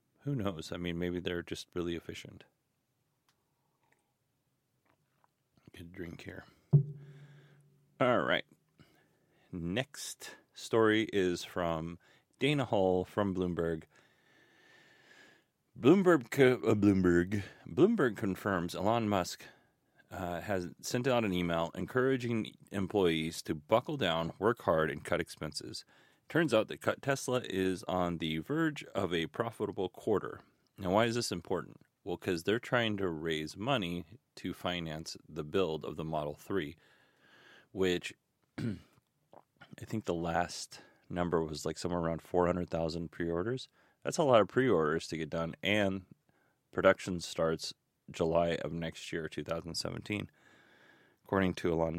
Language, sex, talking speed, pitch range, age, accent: English, male, 125 wpm, 85-120 Hz, 30-49, American